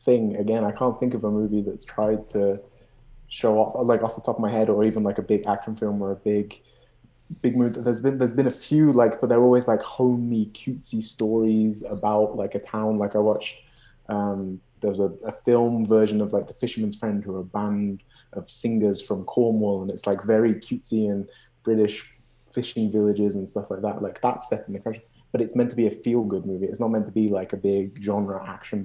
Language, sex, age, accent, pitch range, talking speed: French, male, 20-39, British, 100-115 Hz, 225 wpm